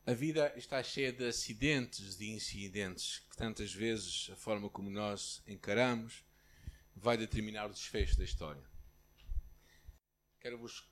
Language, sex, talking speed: Portuguese, male, 125 wpm